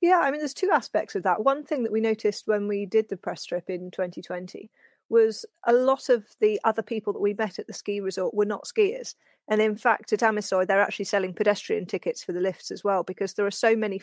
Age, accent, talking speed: 30-49, British, 250 wpm